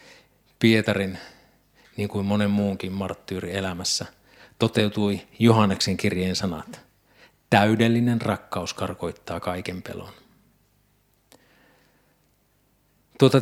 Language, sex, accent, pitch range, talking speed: Finnish, male, native, 100-115 Hz, 75 wpm